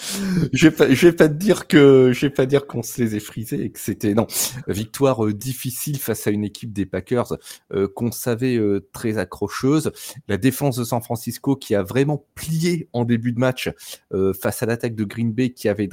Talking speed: 200 wpm